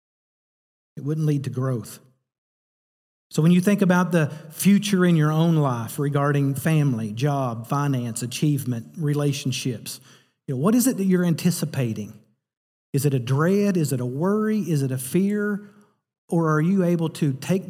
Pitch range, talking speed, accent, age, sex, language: 135-170 Hz, 165 wpm, American, 40-59, male, English